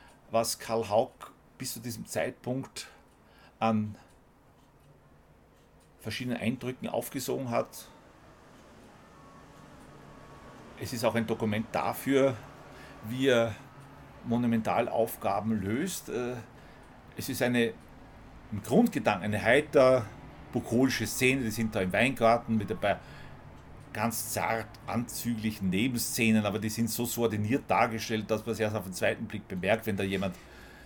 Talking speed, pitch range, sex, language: 115 wpm, 105-125 Hz, male, German